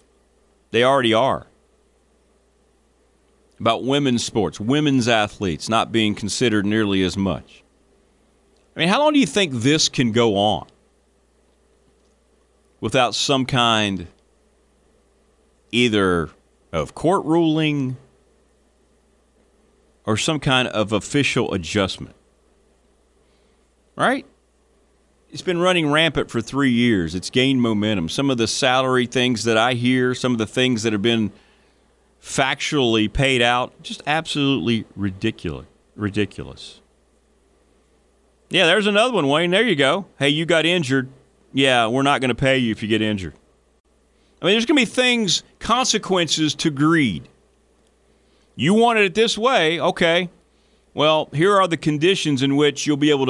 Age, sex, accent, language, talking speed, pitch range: 40-59, male, American, English, 135 wpm, 110-155 Hz